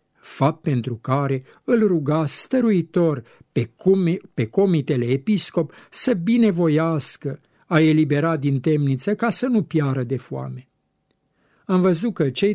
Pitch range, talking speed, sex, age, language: 130-175 Hz, 120 wpm, male, 60-79, Romanian